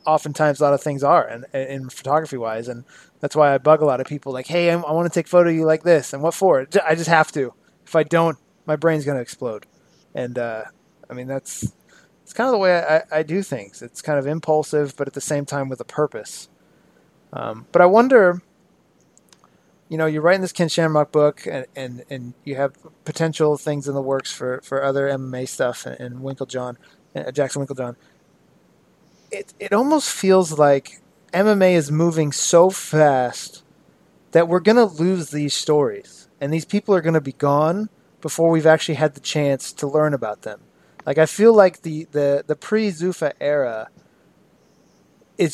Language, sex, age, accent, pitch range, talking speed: English, male, 20-39, American, 140-175 Hz, 200 wpm